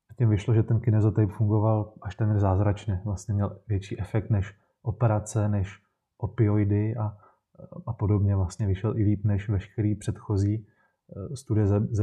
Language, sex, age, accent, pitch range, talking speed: Czech, male, 20-39, native, 100-115 Hz, 135 wpm